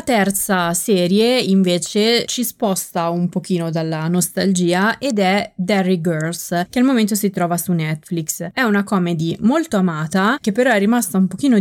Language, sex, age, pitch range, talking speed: Italian, female, 20-39, 175-220 Hz, 160 wpm